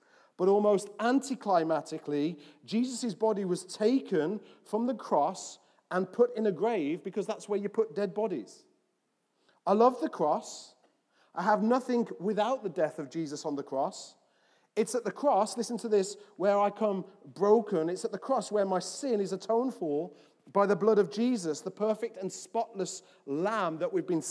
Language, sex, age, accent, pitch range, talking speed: English, male, 40-59, British, 175-225 Hz, 175 wpm